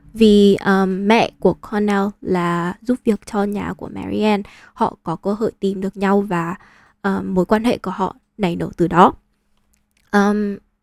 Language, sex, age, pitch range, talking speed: Vietnamese, female, 10-29, 190-230 Hz, 170 wpm